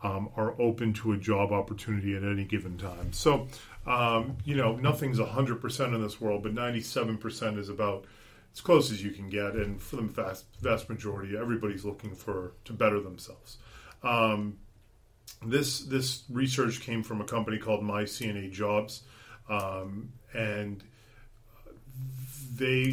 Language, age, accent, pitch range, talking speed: English, 40-59, American, 100-115 Hz, 155 wpm